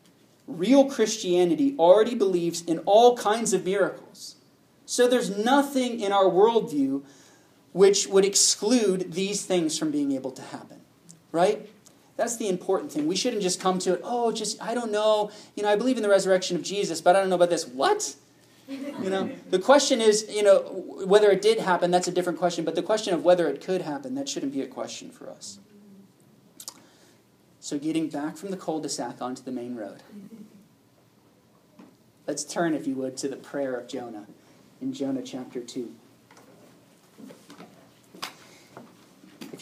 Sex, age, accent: male, 30-49, American